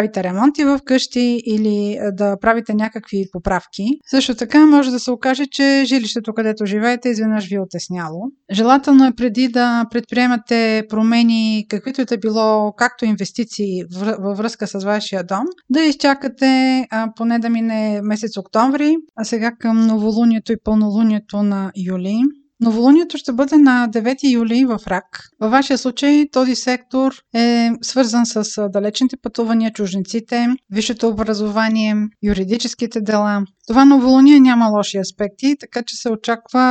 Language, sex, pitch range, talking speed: Bulgarian, female, 210-255 Hz, 145 wpm